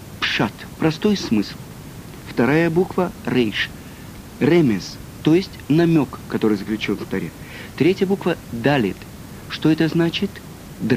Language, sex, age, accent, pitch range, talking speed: Russian, male, 50-69, native, 120-175 Hz, 105 wpm